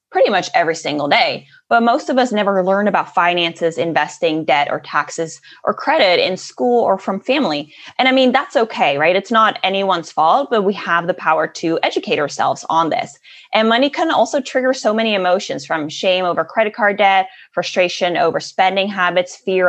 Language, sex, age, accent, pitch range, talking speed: English, female, 20-39, American, 170-225 Hz, 190 wpm